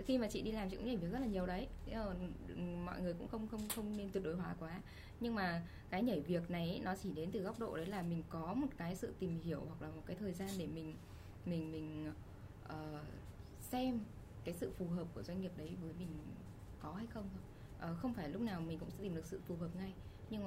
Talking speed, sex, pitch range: 250 wpm, female, 160-200 Hz